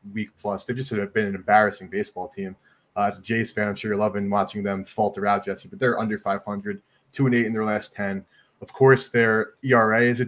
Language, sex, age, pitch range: English, male, 20-39, 100-115 Hz